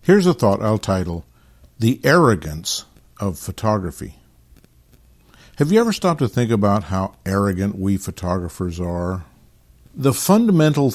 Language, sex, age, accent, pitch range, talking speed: English, male, 50-69, American, 100-130 Hz, 125 wpm